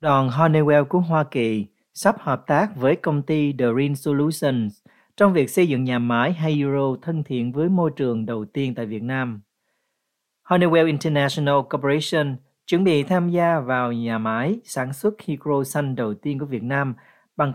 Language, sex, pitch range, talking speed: Vietnamese, male, 130-165 Hz, 175 wpm